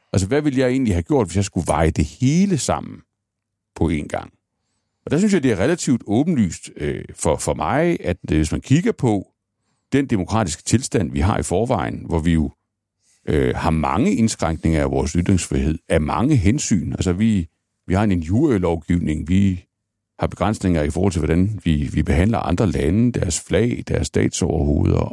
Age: 60-79